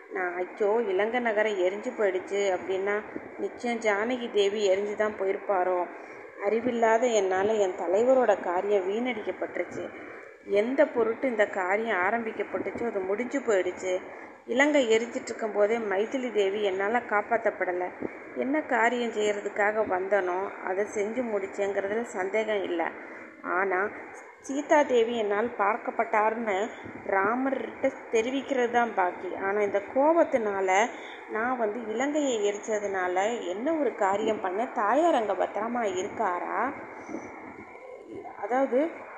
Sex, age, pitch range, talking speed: female, 30-49, 200-250 Hz, 105 wpm